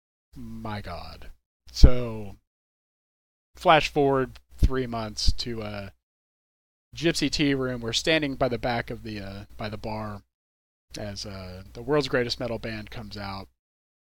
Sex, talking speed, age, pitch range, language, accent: male, 140 wpm, 30-49, 95-135 Hz, English, American